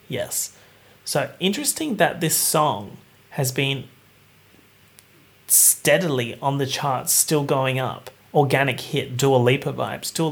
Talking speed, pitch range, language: 120 wpm, 120-150 Hz, English